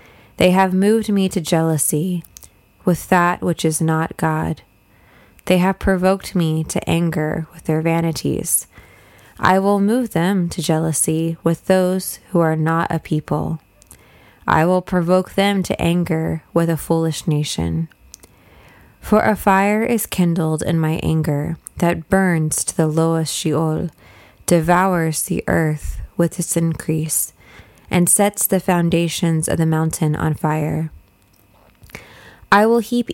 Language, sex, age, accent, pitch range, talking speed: English, female, 20-39, American, 155-185 Hz, 140 wpm